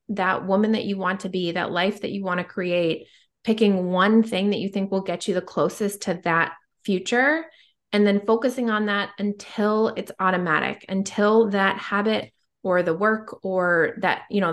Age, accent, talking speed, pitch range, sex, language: 20-39, American, 190 wpm, 190-225 Hz, female, English